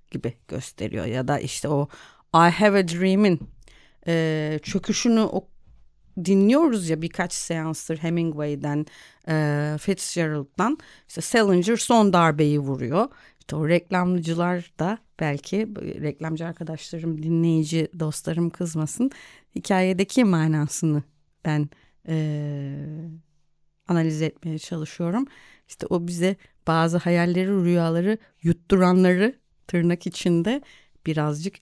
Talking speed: 100 wpm